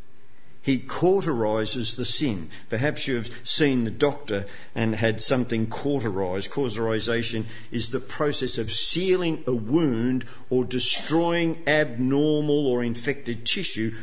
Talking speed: 120 wpm